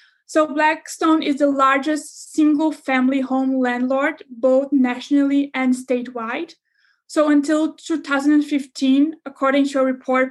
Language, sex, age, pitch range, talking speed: English, female, 20-39, 260-305 Hz, 115 wpm